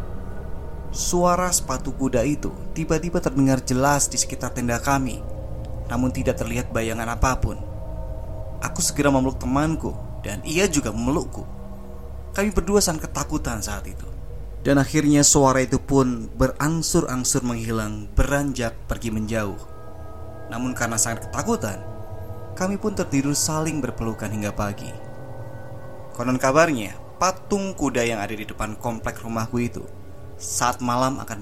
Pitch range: 105-135 Hz